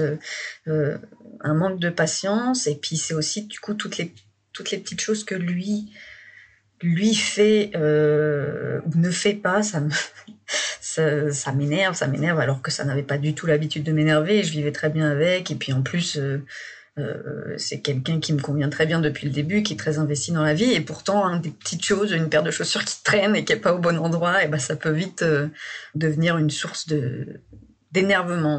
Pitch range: 150-175 Hz